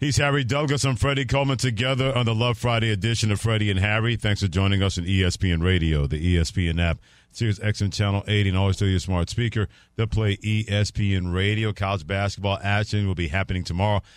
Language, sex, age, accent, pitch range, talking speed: English, male, 40-59, American, 95-110 Hz, 200 wpm